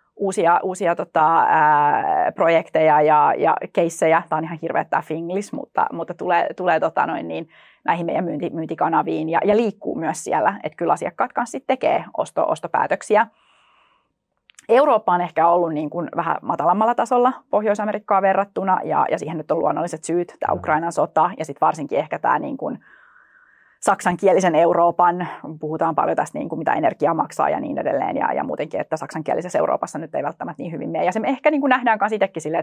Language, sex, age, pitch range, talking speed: Finnish, female, 30-49, 165-215 Hz, 185 wpm